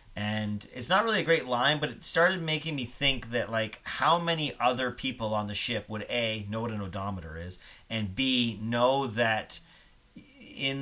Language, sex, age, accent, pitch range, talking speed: English, male, 40-59, American, 105-125 Hz, 190 wpm